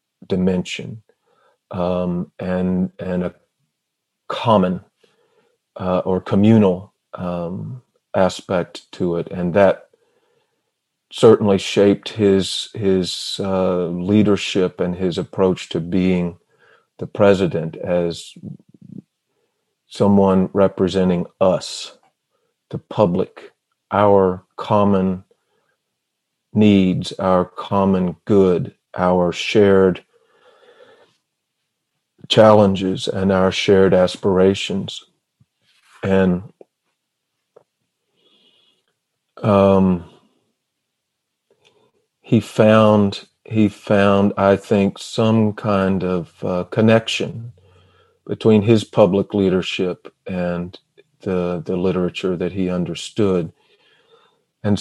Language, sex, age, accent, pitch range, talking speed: English, male, 40-59, American, 90-105 Hz, 80 wpm